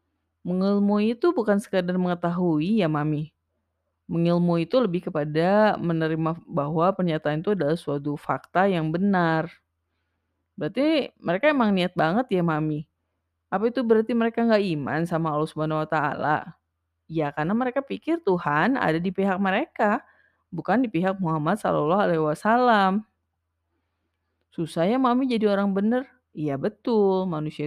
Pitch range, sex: 150-210 Hz, female